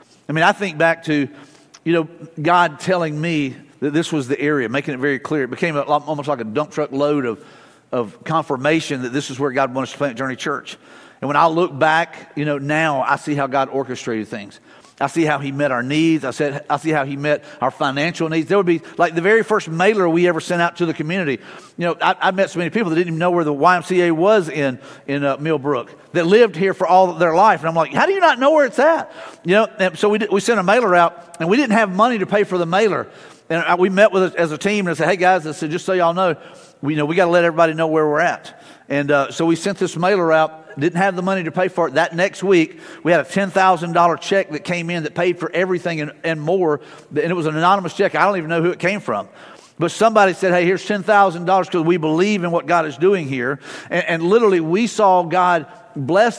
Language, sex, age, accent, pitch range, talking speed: English, male, 50-69, American, 150-190 Hz, 265 wpm